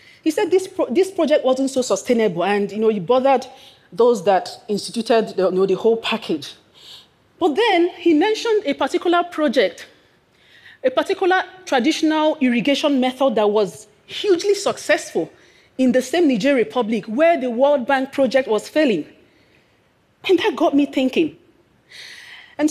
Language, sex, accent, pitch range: Japanese, female, Nigerian, 245-335 Hz